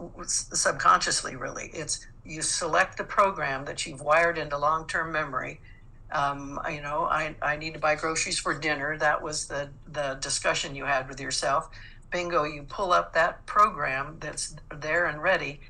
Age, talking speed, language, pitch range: 60-79, 165 wpm, English, 140-160 Hz